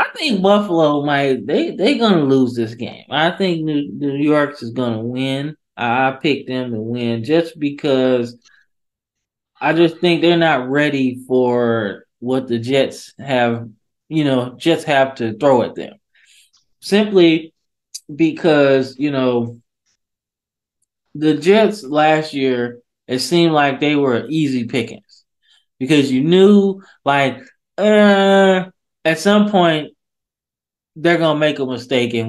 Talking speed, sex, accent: 145 wpm, male, American